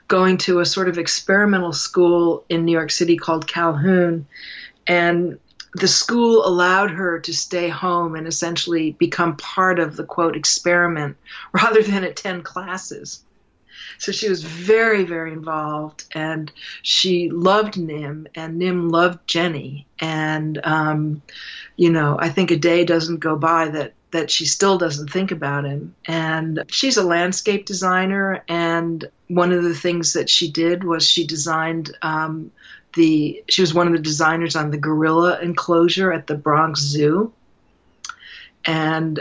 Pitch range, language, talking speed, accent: 155-180 Hz, English, 150 wpm, American